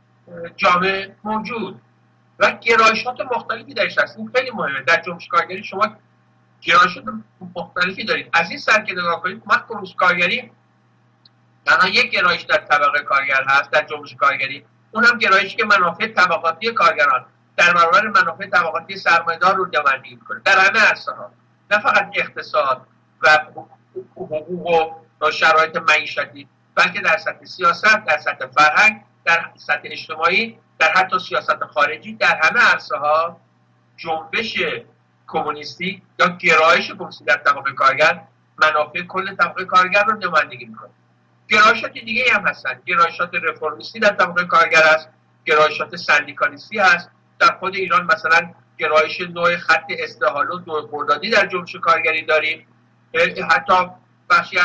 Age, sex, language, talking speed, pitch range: 60-79, male, Persian, 135 wpm, 150-190 Hz